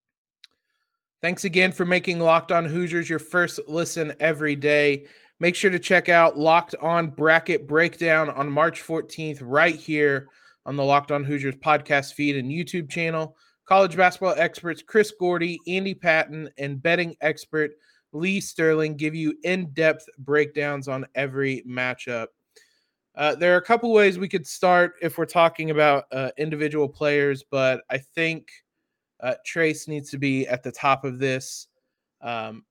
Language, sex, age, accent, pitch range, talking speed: English, male, 20-39, American, 145-175 Hz, 155 wpm